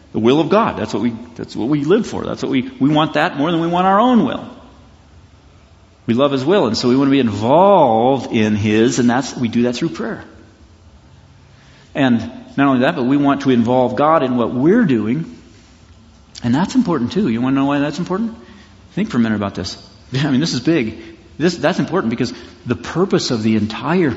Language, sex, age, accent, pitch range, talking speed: English, male, 50-69, American, 110-150 Hz, 225 wpm